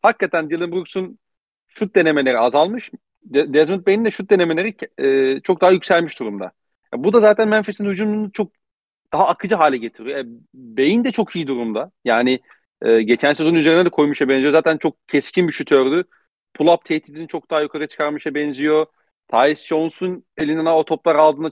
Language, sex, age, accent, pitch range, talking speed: Turkish, male, 40-59, native, 130-180 Hz, 165 wpm